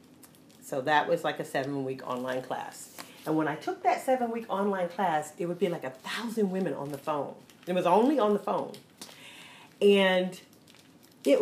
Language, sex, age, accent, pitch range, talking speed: English, female, 40-59, American, 155-210 Hz, 180 wpm